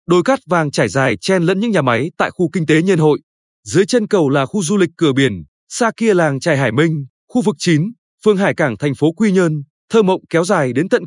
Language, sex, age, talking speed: Vietnamese, male, 20-39, 255 wpm